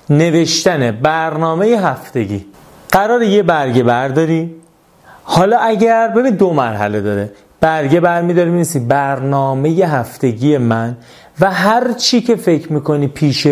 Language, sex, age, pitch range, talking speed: Persian, male, 30-49, 130-175 Hz, 120 wpm